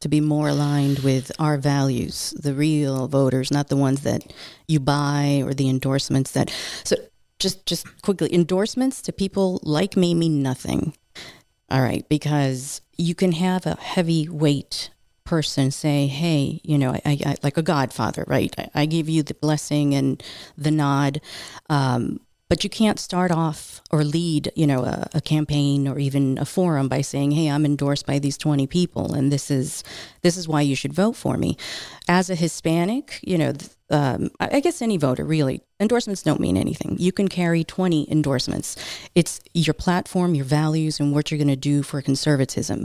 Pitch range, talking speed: 140-175 Hz, 180 wpm